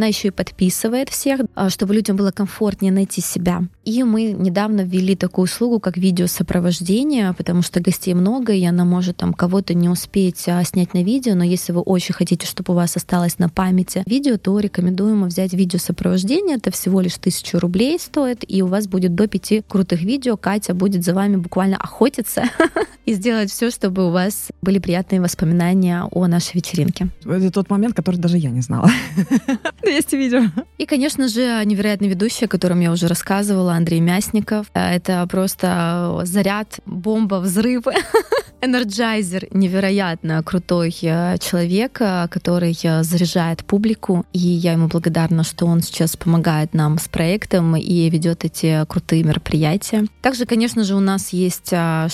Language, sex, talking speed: Russian, female, 160 wpm